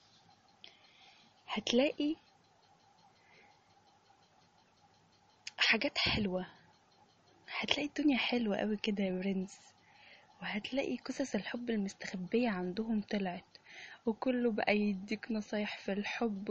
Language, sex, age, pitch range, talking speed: English, female, 10-29, 205-245 Hz, 80 wpm